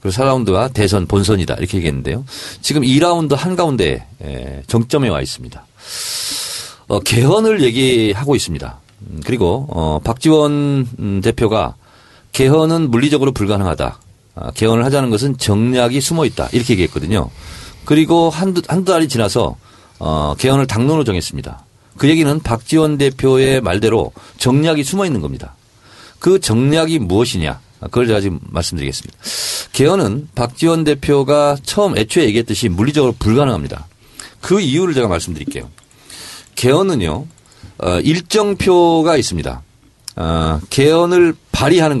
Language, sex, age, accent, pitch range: Korean, male, 40-59, native, 105-155 Hz